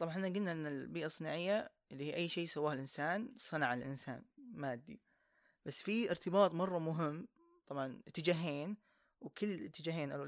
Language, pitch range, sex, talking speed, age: Arabic, 150-205 Hz, female, 145 wpm, 20-39